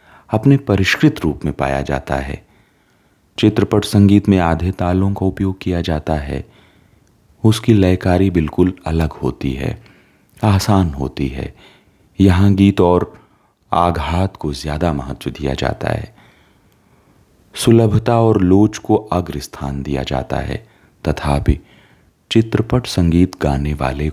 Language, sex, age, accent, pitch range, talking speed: Hindi, male, 30-49, native, 75-100 Hz, 120 wpm